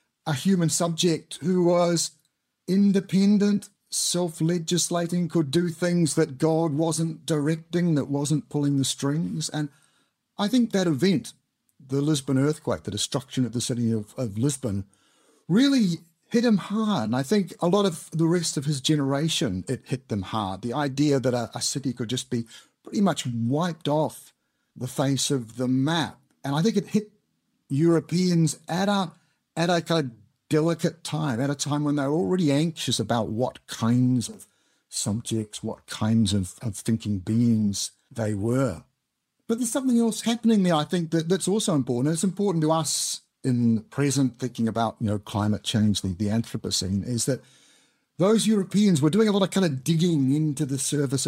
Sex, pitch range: male, 120-170 Hz